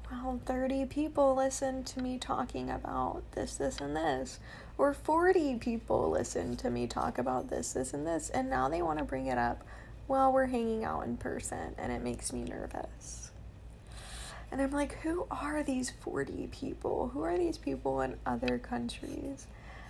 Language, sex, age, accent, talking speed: English, female, 10-29, American, 170 wpm